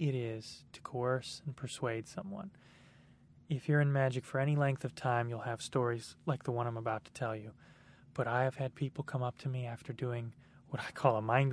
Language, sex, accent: English, male, American